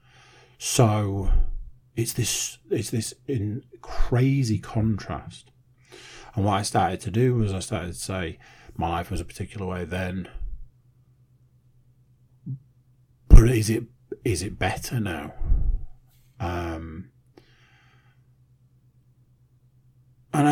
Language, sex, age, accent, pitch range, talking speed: English, male, 40-59, British, 100-125 Hz, 95 wpm